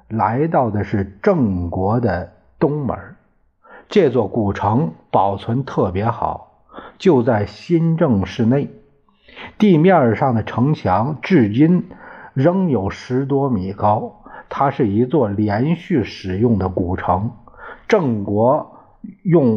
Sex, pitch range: male, 95-135 Hz